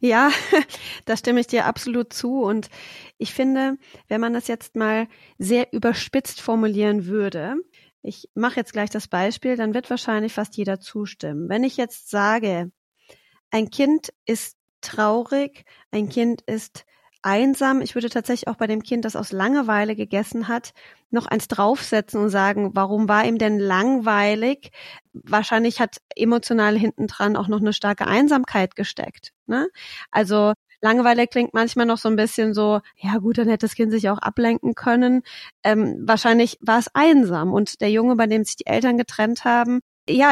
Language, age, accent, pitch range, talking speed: German, 30-49, German, 210-250 Hz, 165 wpm